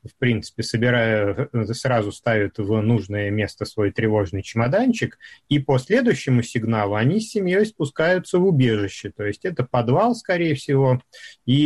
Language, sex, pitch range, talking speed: Russian, male, 110-140 Hz, 140 wpm